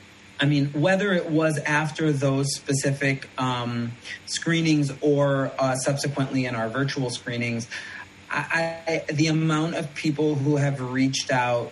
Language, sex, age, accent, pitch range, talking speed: English, male, 30-49, American, 130-155 Hz, 130 wpm